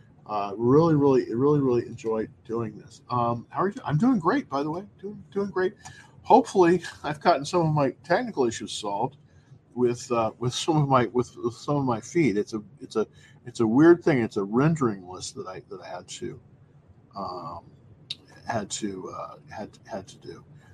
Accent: American